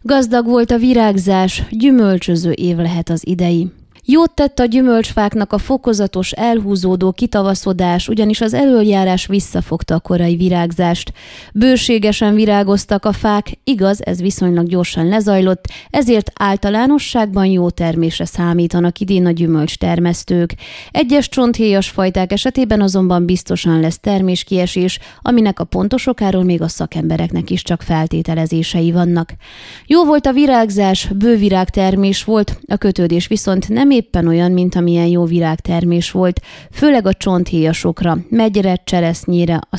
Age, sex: 20-39, female